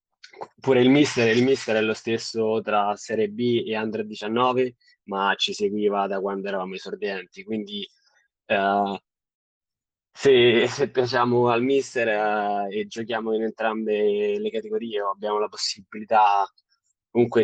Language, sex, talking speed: Italian, male, 140 wpm